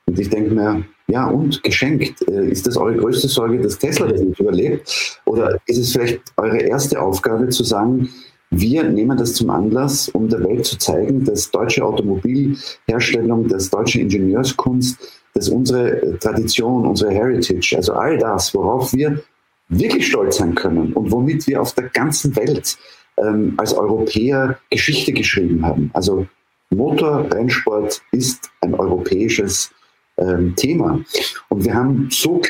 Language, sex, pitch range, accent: German, male, 105-130 Hz, German